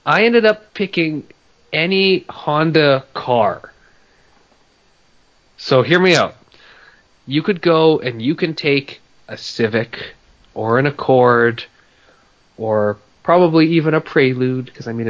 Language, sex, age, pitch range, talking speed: English, male, 30-49, 105-140 Hz, 125 wpm